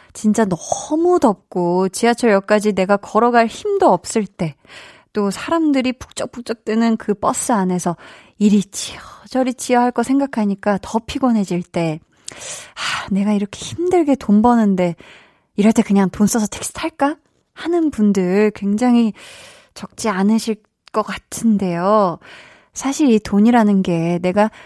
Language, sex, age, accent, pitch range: Korean, female, 20-39, native, 190-255 Hz